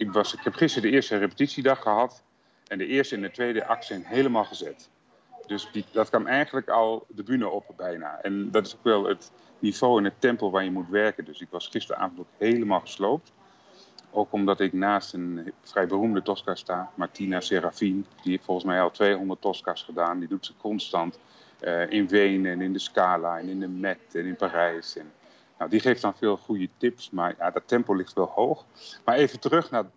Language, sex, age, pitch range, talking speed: Dutch, male, 30-49, 95-120 Hz, 210 wpm